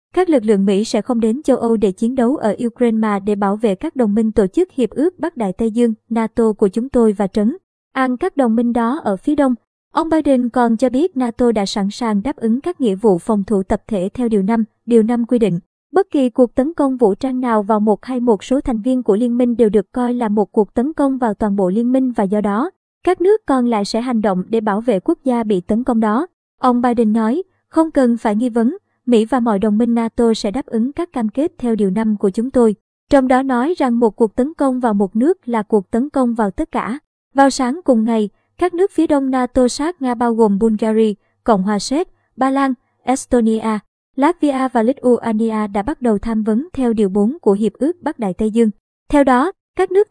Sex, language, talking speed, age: male, Vietnamese, 245 wpm, 20-39